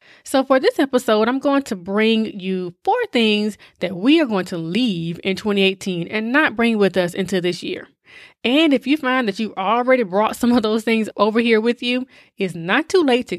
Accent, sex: American, female